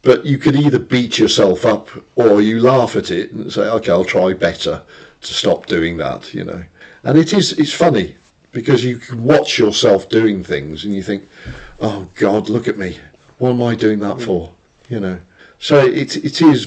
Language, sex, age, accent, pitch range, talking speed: English, male, 50-69, British, 95-125 Hz, 200 wpm